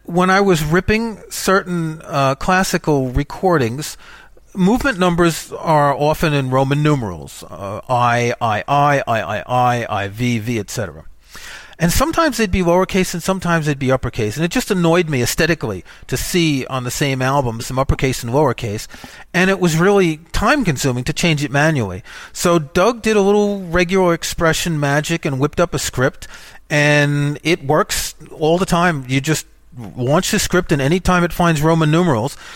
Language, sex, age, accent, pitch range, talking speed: English, male, 40-59, American, 130-175 Hz, 170 wpm